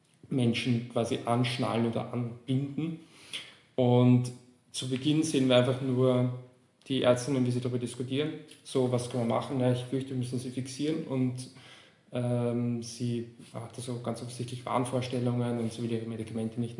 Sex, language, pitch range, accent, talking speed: male, German, 120-130 Hz, German, 160 wpm